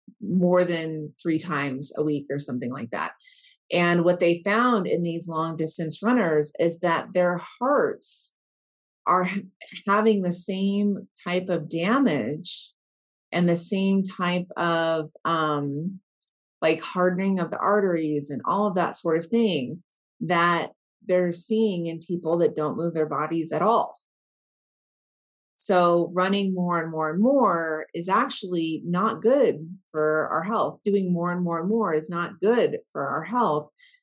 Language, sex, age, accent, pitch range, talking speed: English, female, 30-49, American, 155-190 Hz, 150 wpm